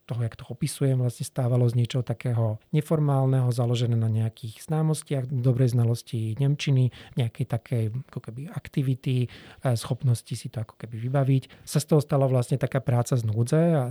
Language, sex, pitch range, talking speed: Slovak, male, 115-135 Hz, 160 wpm